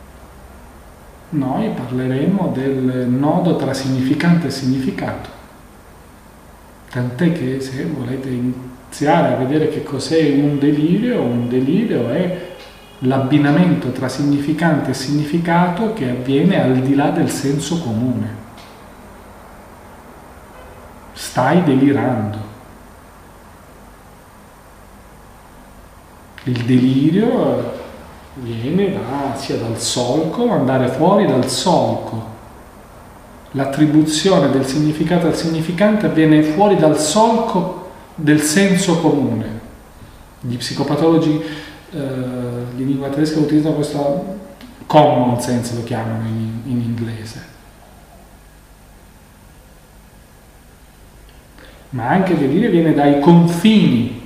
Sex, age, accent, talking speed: male, 40-59, native, 90 wpm